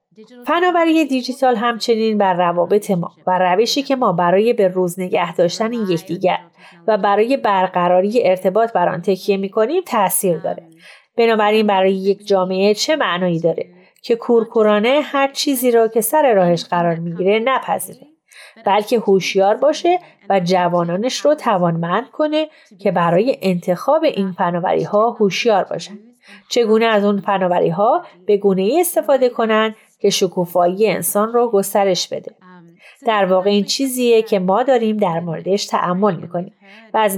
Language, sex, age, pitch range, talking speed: Persian, female, 30-49, 185-235 Hz, 140 wpm